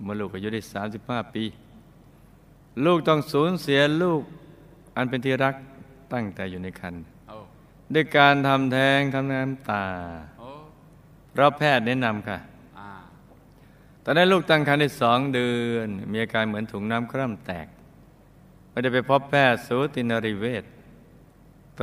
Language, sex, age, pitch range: Thai, male, 60-79, 110-135 Hz